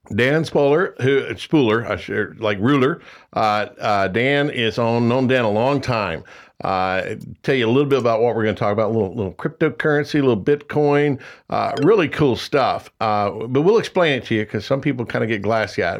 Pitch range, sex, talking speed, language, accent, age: 110-140 Hz, male, 215 wpm, English, American, 60-79